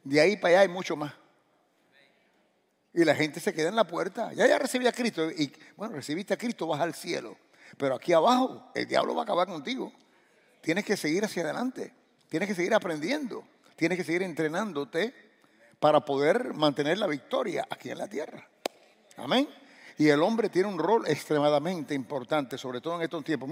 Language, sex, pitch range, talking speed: English, male, 150-220 Hz, 185 wpm